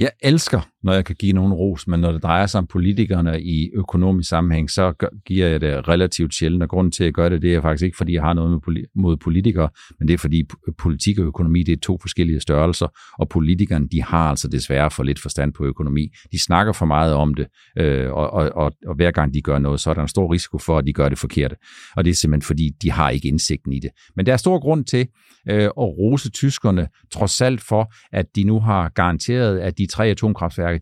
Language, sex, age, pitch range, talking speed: Danish, male, 50-69, 85-110 Hz, 235 wpm